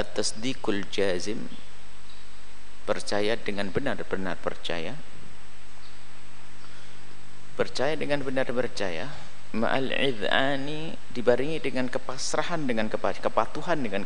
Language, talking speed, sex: Indonesian, 75 wpm, male